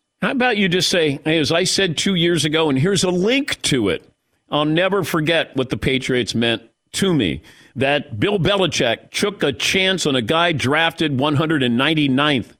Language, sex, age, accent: English, male, 50-69, American